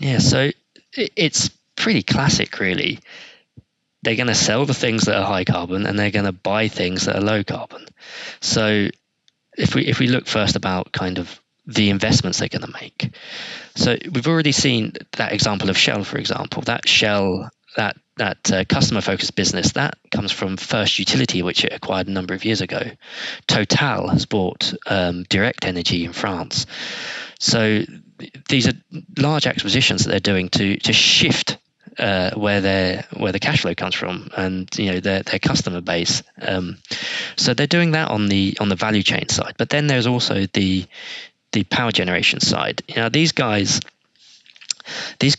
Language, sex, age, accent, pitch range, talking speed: English, male, 20-39, British, 95-125 Hz, 175 wpm